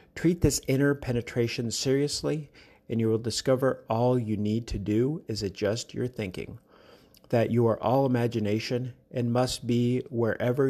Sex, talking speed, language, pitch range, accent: male, 150 wpm, English, 105-130 Hz, American